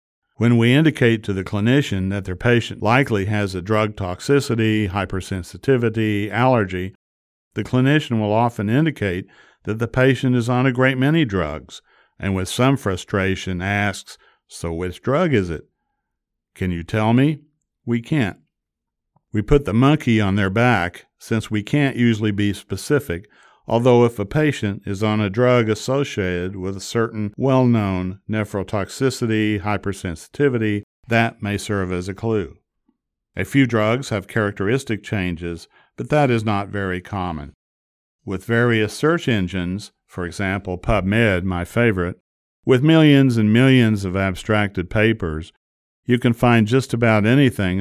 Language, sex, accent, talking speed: English, male, American, 145 wpm